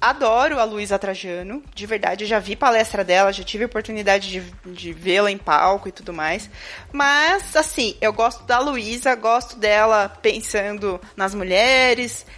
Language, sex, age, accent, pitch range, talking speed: Portuguese, female, 20-39, Brazilian, 210-275 Hz, 155 wpm